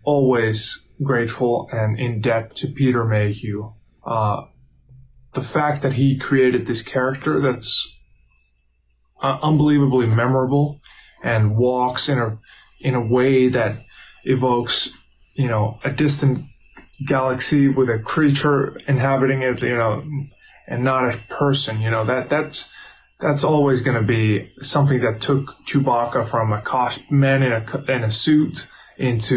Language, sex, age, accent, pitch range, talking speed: English, male, 20-39, American, 110-135 Hz, 135 wpm